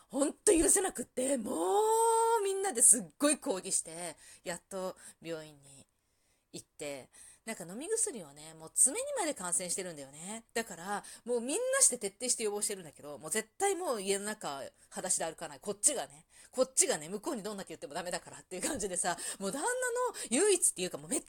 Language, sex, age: Japanese, female, 30-49